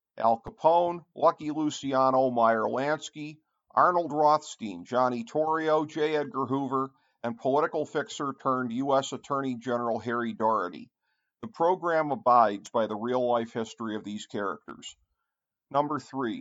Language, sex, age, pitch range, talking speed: English, male, 50-69, 120-145 Hz, 115 wpm